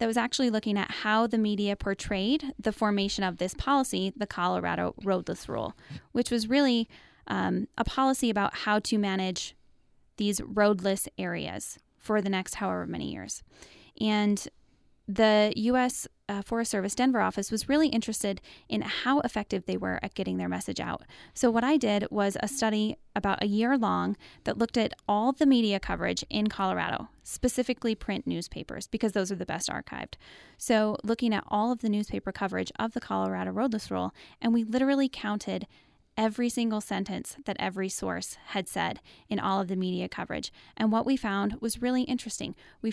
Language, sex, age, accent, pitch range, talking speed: English, female, 10-29, American, 195-230 Hz, 175 wpm